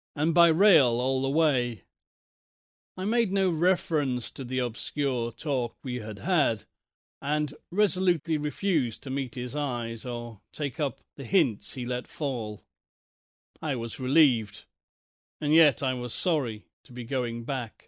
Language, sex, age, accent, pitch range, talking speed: English, male, 40-59, British, 125-165 Hz, 150 wpm